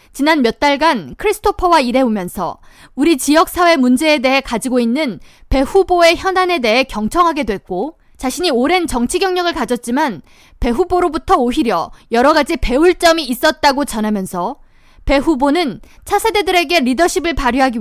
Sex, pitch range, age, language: female, 255-360 Hz, 20-39, Korean